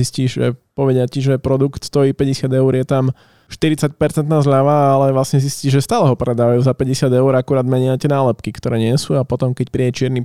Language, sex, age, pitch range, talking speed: Slovak, male, 20-39, 130-150 Hz, 205 wpm